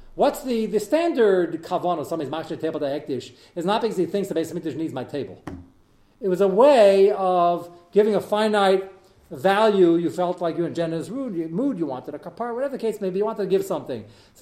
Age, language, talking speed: 40-59, English, 225 wpm